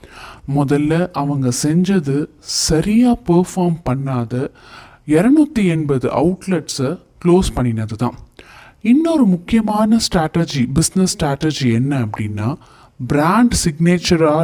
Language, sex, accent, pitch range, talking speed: Tamil, male, native, 135-180 Hz, 85 wpm